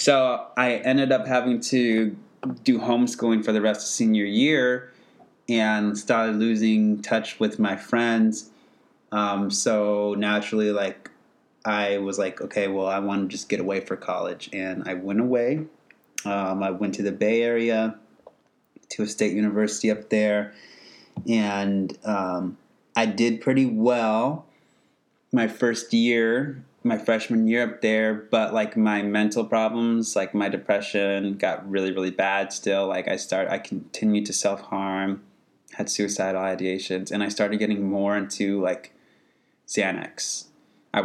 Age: 30-49